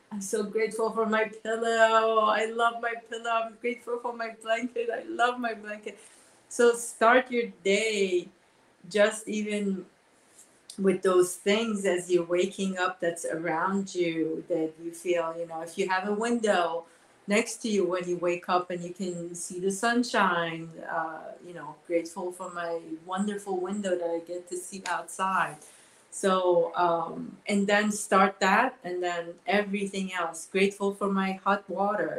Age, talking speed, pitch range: 30-49, 160 wpm, 170-215 Hz